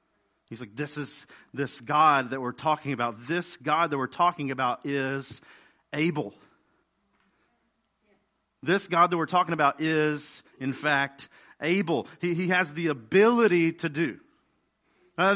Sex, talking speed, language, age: male, 140 wpm, English, 40-59